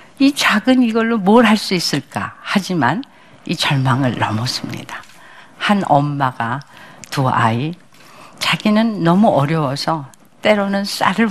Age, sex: 50-69, female